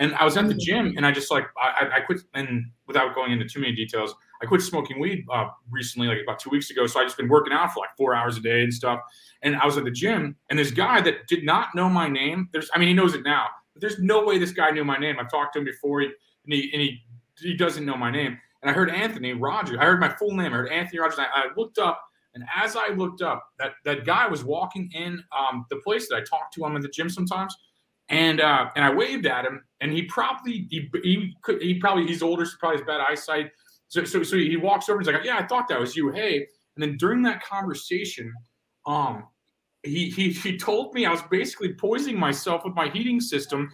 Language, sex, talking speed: English, male, 260 wpm